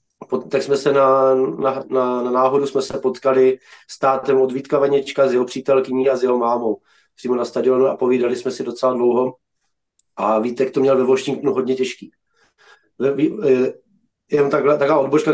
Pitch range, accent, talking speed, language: 130-150 Hz, native, 185 wpm, Czech